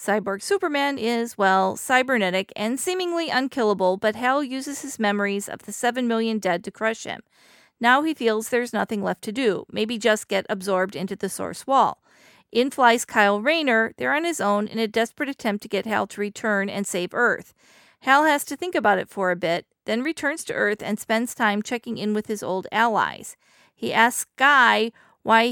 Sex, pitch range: female, 200-245 Hz